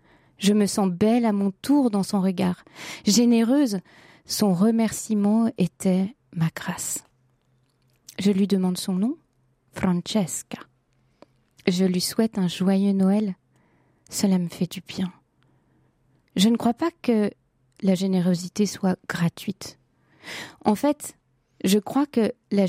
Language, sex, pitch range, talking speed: French, female, 180-220 Hz, 125 wpm